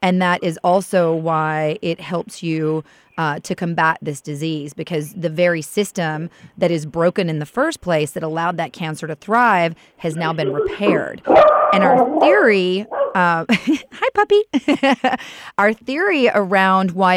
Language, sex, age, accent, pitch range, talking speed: English, female, 30-49, American, 160-195 Hz, 155 wpm